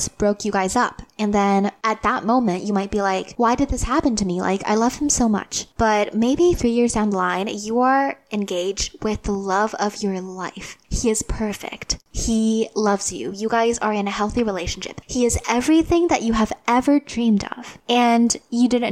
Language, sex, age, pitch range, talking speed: English, female, 10-29, 200-245 Hz, 210 wpm